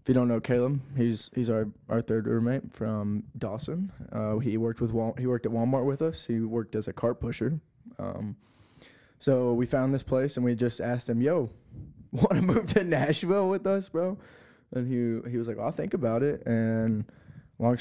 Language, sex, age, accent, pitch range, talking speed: English, male, 20-39, American, 110-130 Hz, 210 wpm